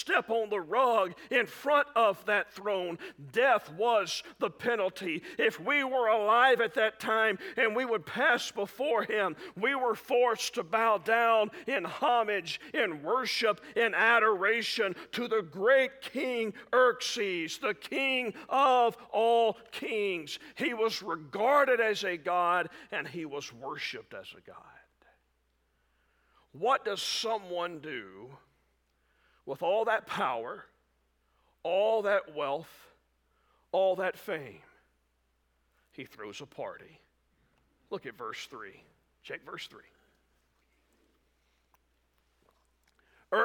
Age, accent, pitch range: 50-69, American, 145-245 Hz